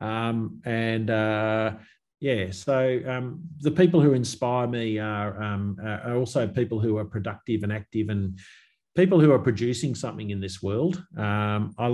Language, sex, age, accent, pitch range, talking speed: English, male, 40-59, Australian, 105-125 Hz, 160 wpm